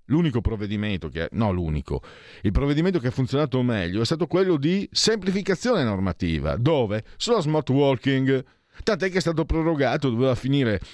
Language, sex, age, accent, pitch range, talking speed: Italian, male, 40-59, native, 95-135 Hz, 150 wpm